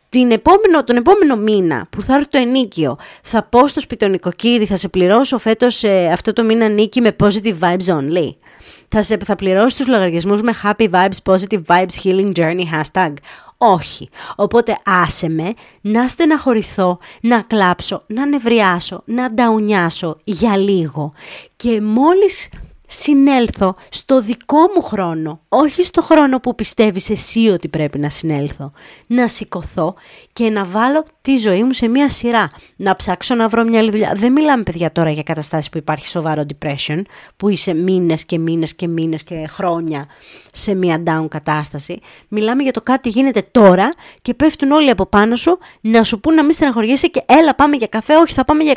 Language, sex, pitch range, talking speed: Greek, female, 175-250 Hz, 170 wpm